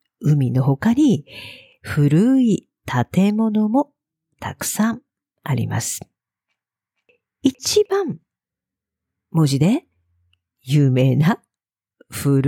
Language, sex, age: Japanese, female, 50-69